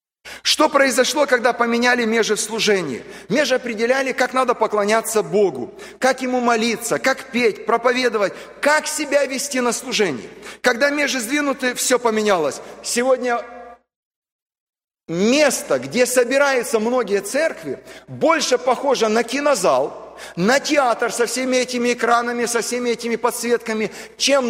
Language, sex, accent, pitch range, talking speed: Russian, male, native, 230-280 Hz, 120 wpm